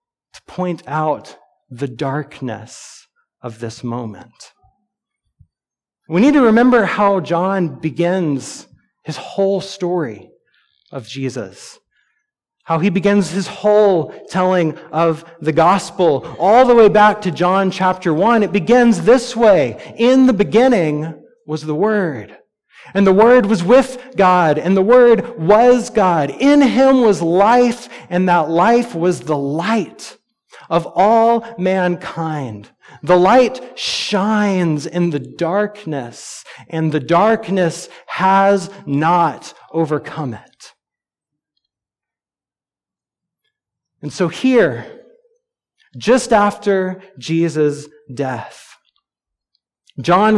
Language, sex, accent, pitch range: English, male, American, 155-215 Hz